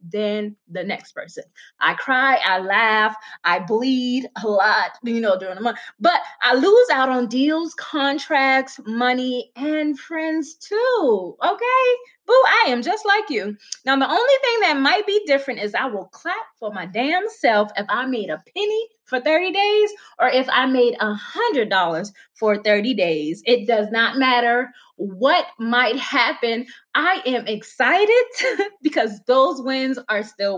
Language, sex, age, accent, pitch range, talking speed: English, female, 20-39, American, 215-305 Hz, 165 wpm